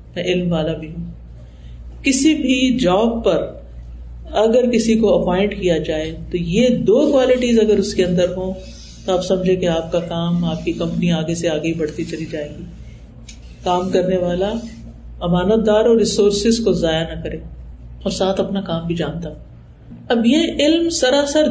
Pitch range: 170-250 Hz